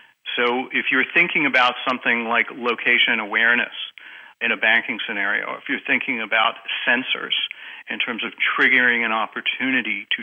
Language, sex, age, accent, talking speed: English, male, 50-69, American, 155 wpm